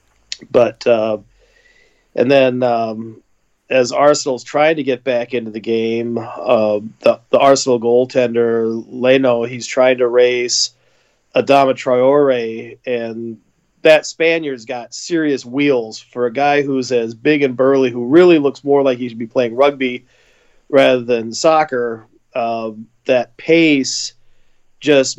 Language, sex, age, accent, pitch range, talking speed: English, male, 40-59, American, 120-145 Hz, 135 wpm